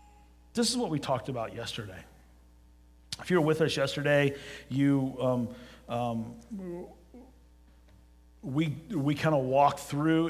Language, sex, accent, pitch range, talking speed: English, male, American, 120-150 Hz, 130 wpm